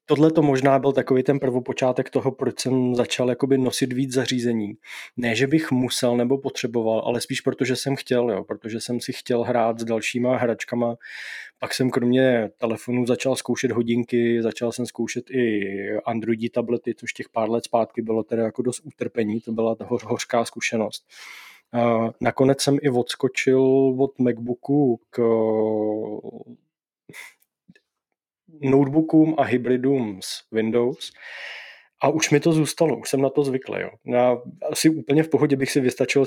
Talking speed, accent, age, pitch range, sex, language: 155 wpm, native, 20-39, 120-135 Hz, male, Czech